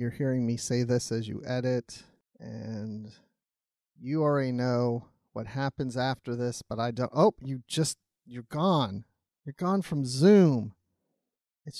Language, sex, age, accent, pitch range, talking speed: English, male, 30-49, American, 120-170 Hz, 145 wpm